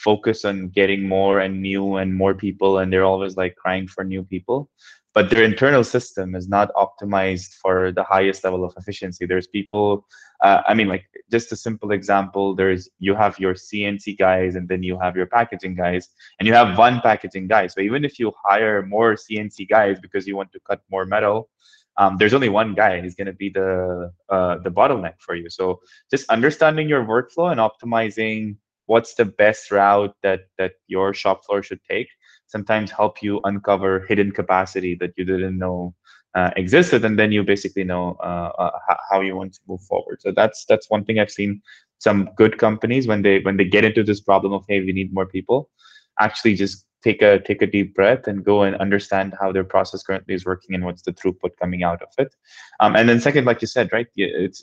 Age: 20-39